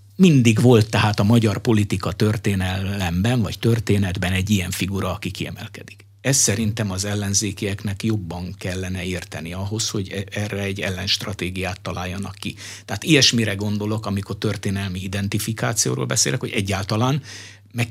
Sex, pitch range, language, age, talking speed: male, 100-110 Hz, Hungarian, 60-79, 125 wpm